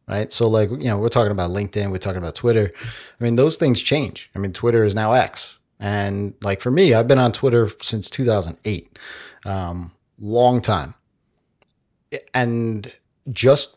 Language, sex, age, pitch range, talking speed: English, male, 30-49, 105-125 Hz, 170 wpm